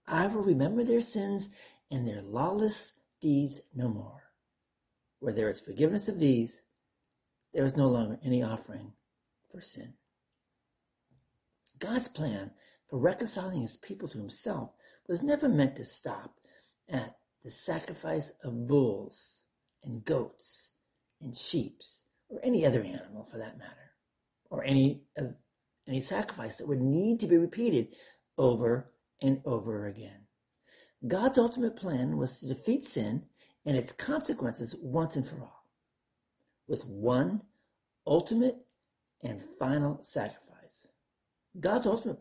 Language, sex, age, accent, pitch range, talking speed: English, male, 50-69, American, 125-200 Hz, 130 wpm